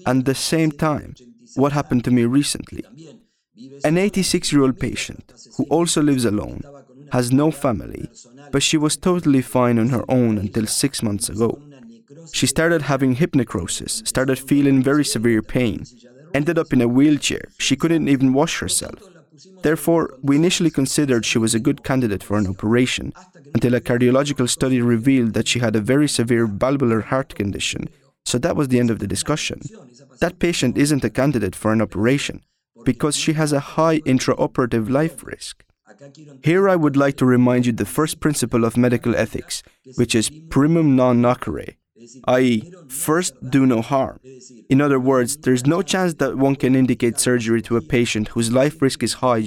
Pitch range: 120-145 Hz